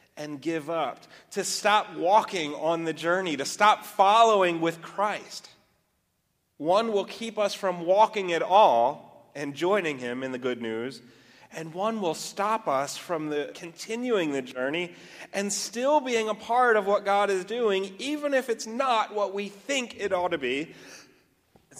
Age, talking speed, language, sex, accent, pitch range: 30-49, 170 wpm, English, male, American, 130-185 Hz